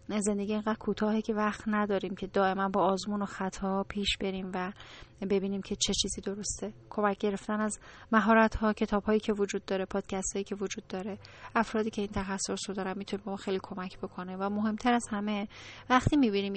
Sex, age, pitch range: female, 10-29, 195-220 Hz